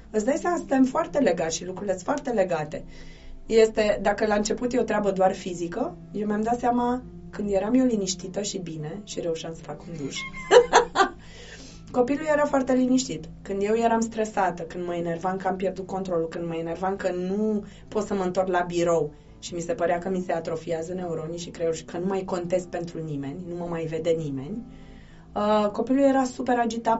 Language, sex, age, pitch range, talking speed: Romanian, female, 20-39, 175-230 Hz, 195 wpm